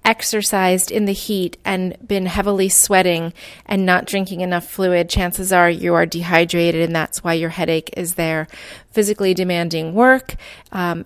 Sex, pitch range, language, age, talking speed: female, 180-215 Hz, English, 30-49, 155 wpm